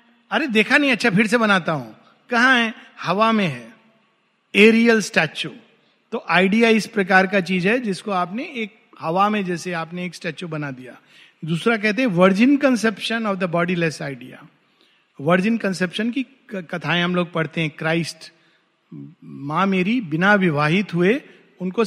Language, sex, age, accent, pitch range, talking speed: Hindi, male, 50-69, native, 170-235 Hz, 125 wpm